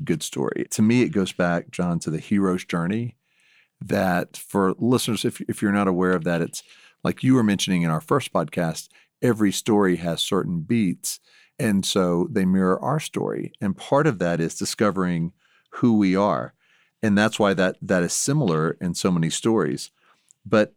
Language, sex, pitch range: English, male, 85-115 Hz